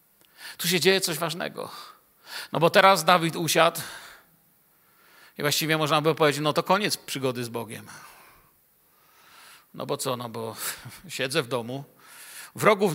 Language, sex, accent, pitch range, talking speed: Polish, male, native, 155-215 Hz, 140 wpm